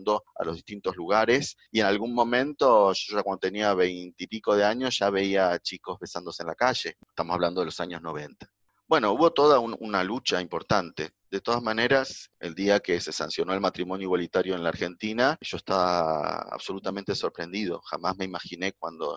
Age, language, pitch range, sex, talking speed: 40-59, Spanish, 90-120 Hz, male, 175 wpm